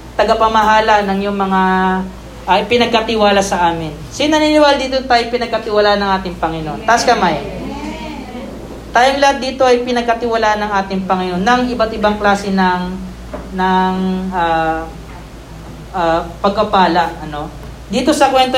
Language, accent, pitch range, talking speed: Filipino, native, 185-225 Hz, 125 wpm